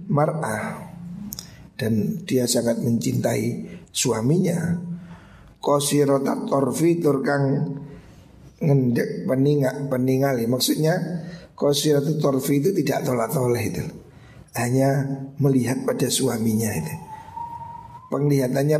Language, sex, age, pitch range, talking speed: Indonesian, male, 50-69, 125-160 Hz, 80 wpm